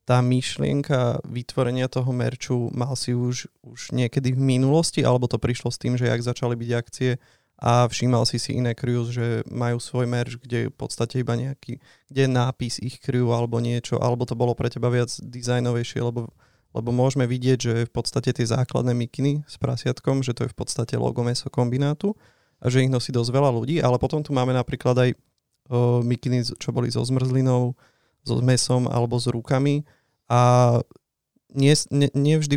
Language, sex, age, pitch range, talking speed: Slovak, male, 30-49, 120-135 Hz, 180 wpm